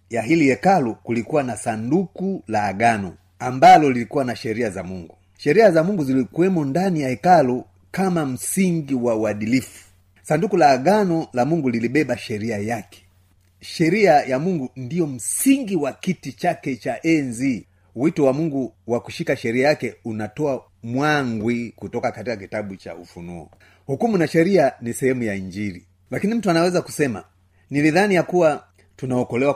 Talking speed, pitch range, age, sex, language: 145 wpm, 100-150 Hz, 30-49, male, Swahili